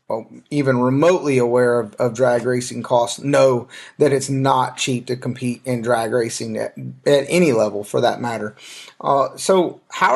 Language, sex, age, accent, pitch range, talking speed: English, male, 30-49, American, 130-165 Hz, 165 wpm